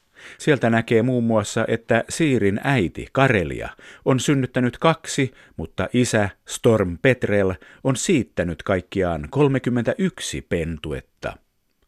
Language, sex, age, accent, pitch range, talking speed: Finnish, male, 50-69, native, 95-125 Hz, 100 wpm